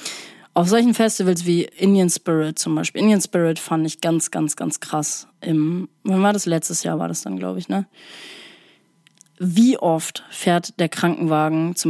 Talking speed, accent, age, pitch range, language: 170 wpm, German, 20-39, 160-195 Hz, German